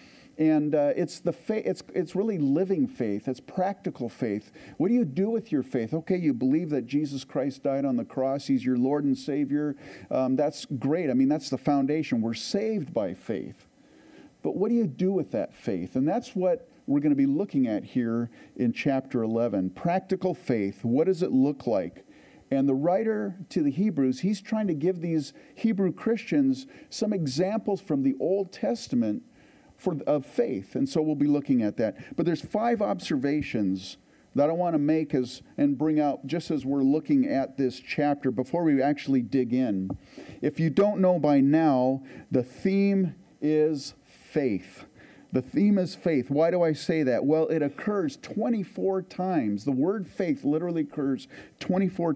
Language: English